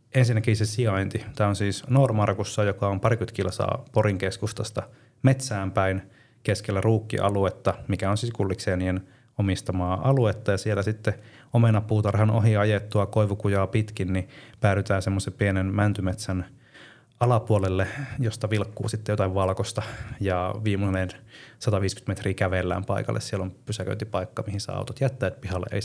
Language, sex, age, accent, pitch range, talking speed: Finnish, male, 30-49, native, 95-115 Hz, 130 wpm